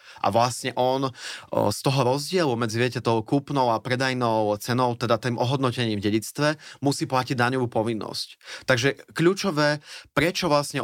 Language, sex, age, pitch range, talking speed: Slovak, male, 20-39, 115-140 Hz, 150 wpm